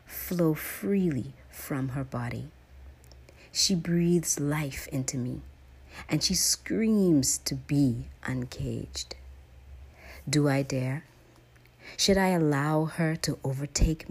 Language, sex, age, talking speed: English, female, 40-59, 105 wpm